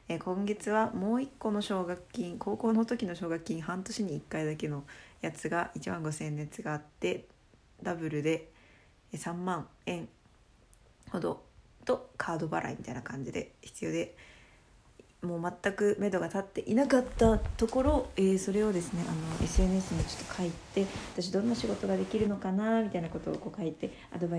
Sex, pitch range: female, 160-190 Hz